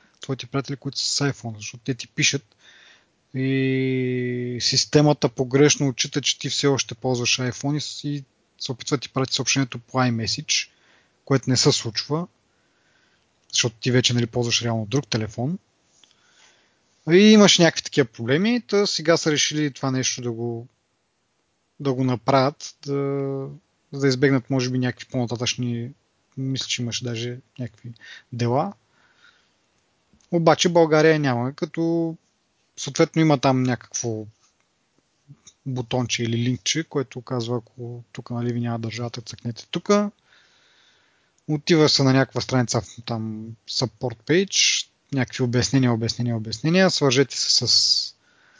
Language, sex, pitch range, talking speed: Bulgarian, male, 120-150 Hz, 130 wpm